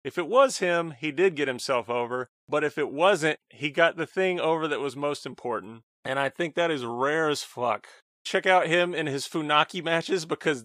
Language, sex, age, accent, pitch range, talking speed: English, male, 30-49, American, 145-180 Hz, 215 wpm